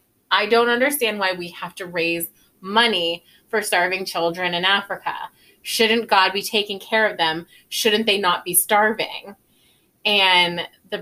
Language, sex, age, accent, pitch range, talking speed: English, female, 20-39, American, 175-215 Hz, 150 wpm